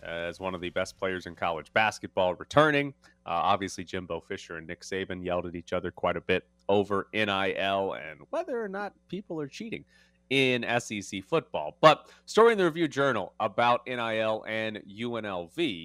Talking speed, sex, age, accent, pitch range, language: 175 wpm, male, 30-49, American, 90-120 Hz, English